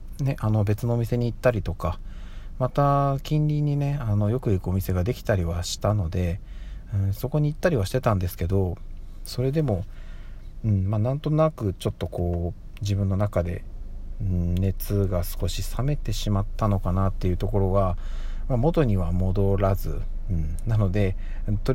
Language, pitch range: Japanese, 90-115 Hz